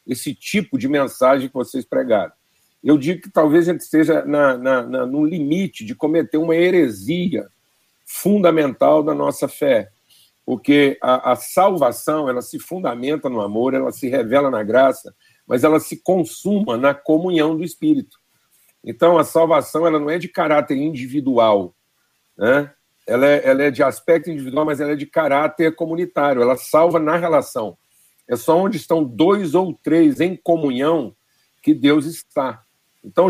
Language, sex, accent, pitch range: Portuguese, male, Brazilian, 140-170 Hz